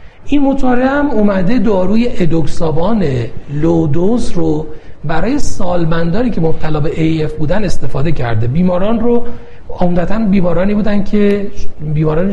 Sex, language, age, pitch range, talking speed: male, Persian, 40-59, 150-205 Hz, 110 wpm